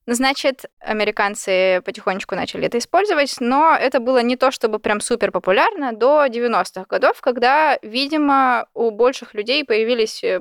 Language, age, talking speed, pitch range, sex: Russian, 20-39, 140 wpm, 205-270 Hz, female